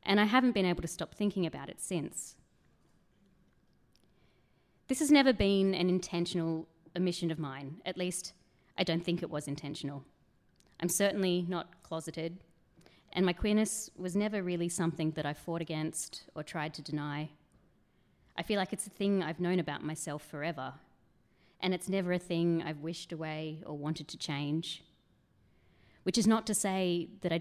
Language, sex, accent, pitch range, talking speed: English, female, Australian, 155-185 Hz, 170 wpm